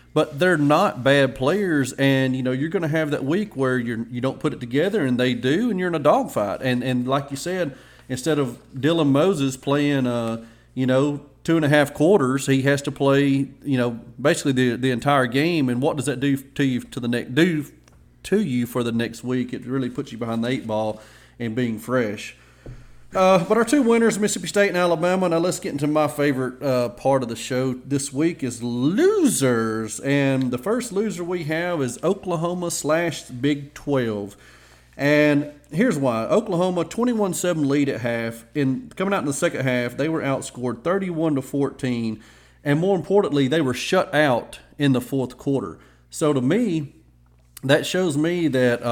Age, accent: 40-59, American